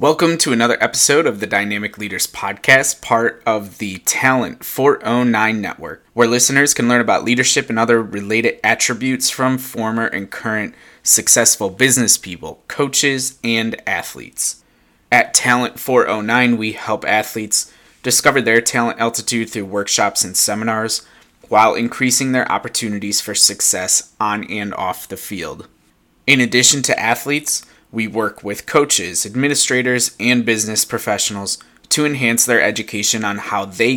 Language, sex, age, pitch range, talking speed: English, male, 20-39, 110-130 Hz, 140 wpm